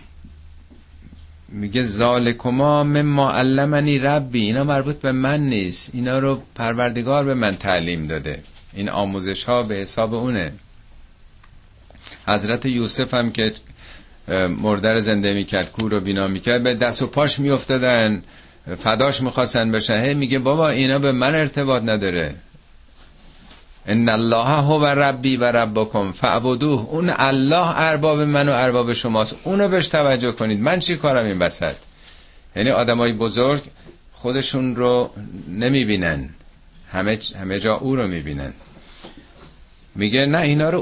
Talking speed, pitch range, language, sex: 130 wpm, 95-135 Hz, Persian, male